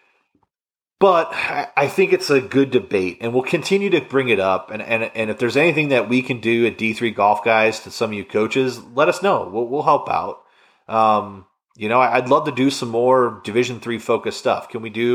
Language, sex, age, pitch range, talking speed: English, male, 30-49, 110-130 Hz, 220 wpm